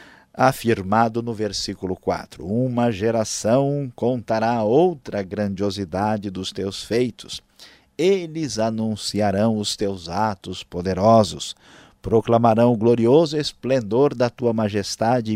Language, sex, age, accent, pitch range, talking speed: Portuguese, male, 50-69, Brazilian, 100-125 Hz, 100 wpm